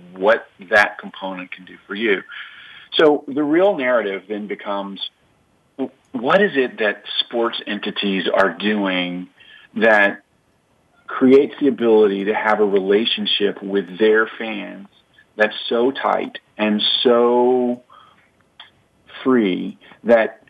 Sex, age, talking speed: male, 40-59, 115 wpm